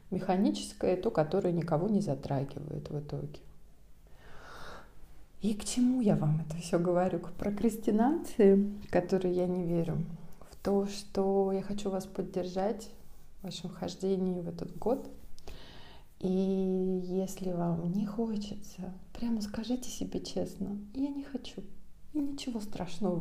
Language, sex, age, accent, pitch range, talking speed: Russian, female, 30-49, native, 180-220 Hz, 130 wpm